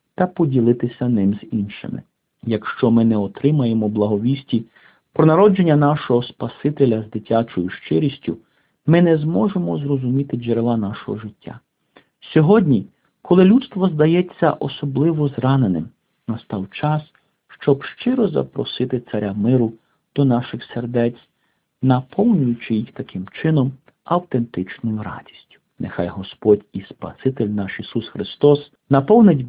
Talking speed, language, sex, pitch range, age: 110 wpm, Ukrainian, male, 110-150 Hz, 50-69